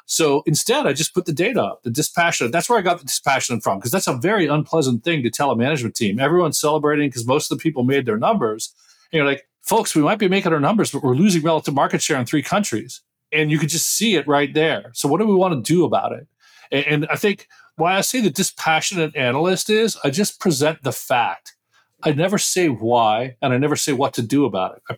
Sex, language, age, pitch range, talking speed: male, English, 40-59, 140-180 Hz, 250 wpm